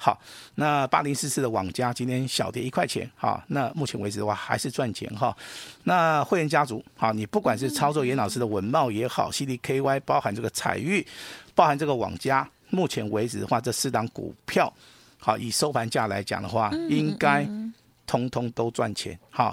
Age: 50-69